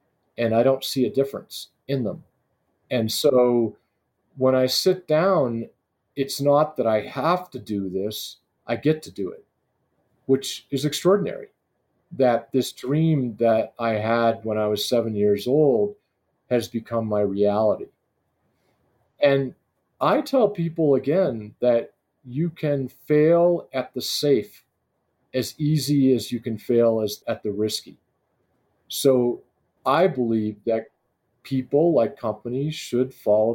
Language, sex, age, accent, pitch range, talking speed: English, male, 40-59, American, 115-145 Hz, 140 wpm